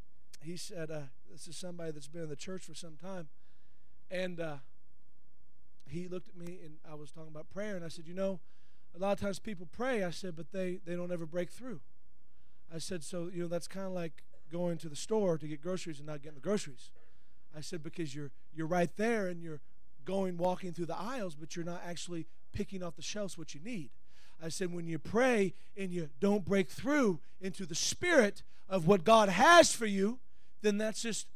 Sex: male